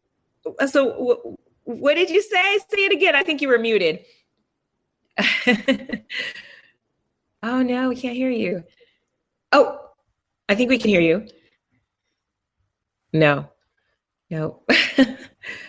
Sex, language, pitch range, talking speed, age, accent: female, English, 155-235 Hz, 105 wpm, 20-39, American